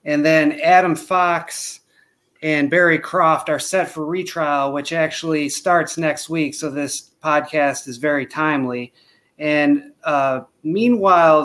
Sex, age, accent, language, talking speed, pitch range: male, 30-49, American, English, 130 wpm, 145-185 Hz